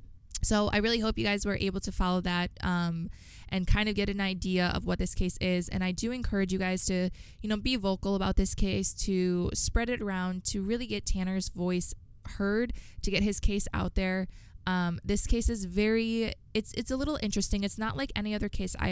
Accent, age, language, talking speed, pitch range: American, 20-39, English, 220 wpm, 170-205 Hz